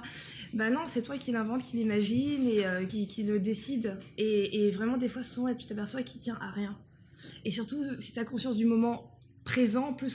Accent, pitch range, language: French, 210-250 Hz, French